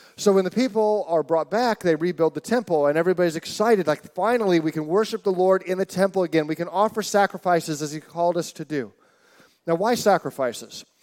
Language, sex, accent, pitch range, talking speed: English, male, American, 155-210 Hz, 205 wpm